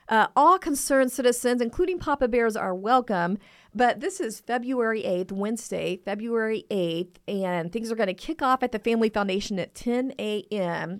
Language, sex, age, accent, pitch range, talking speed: English, female, 40-59, American, 190-240 Hz, 170 wpm